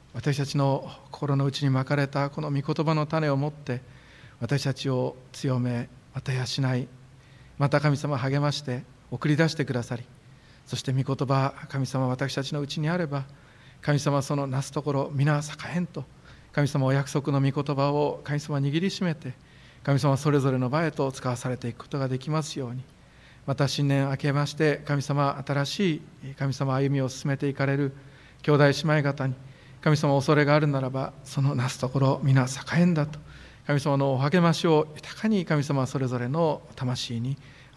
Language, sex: Japanese, male